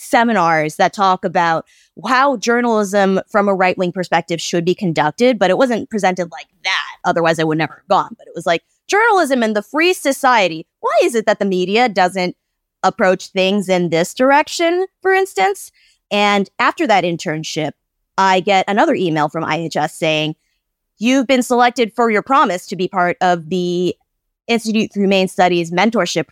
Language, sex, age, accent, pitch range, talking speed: English, female, 20-39, American, 175-245 Hz, 170 wpm